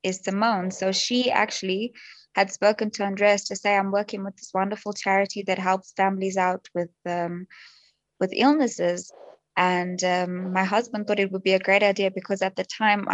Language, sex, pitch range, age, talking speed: English, female, 185-210 Hz, 20-39, 185 wpm